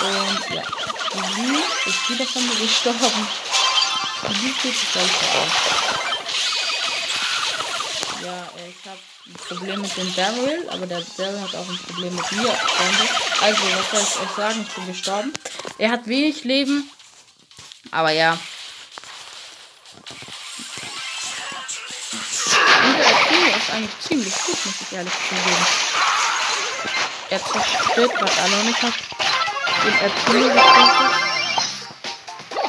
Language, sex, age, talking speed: German, female, 20-39, 125 wpm